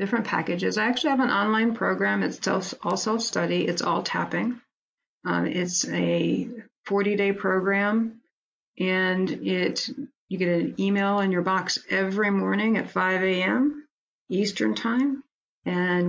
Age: 50-69